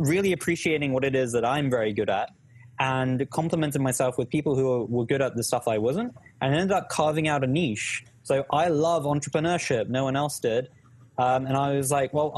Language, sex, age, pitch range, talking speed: English, male, 20-39, 125-155 Hz, 215 wpm